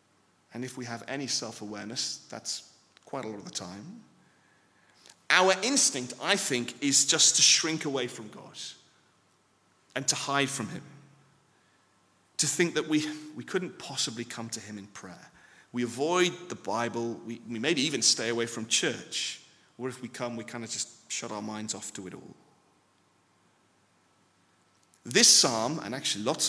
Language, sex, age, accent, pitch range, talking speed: English, male, 30-49, British, 120-180 Hz, 165 wpm